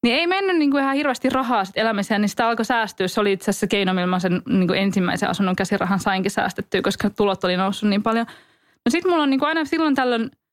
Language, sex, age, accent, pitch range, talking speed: English, female, 20-39, Finnish, 190-235 Hz, 200 wpm